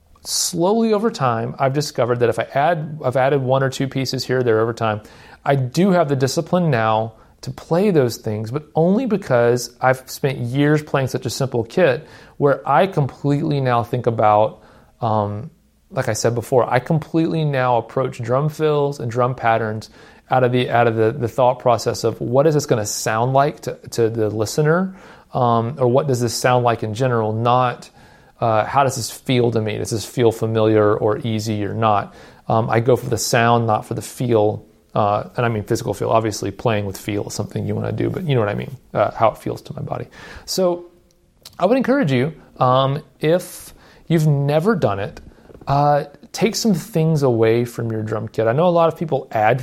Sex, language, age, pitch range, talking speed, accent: male, English, 40-59, 110-145 Hz, 210 wpm, American